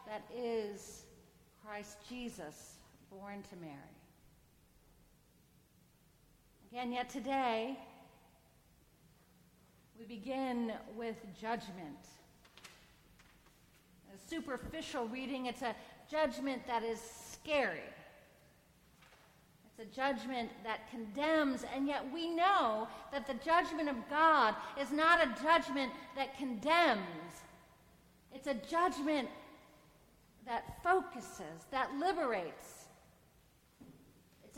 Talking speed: 90 wpm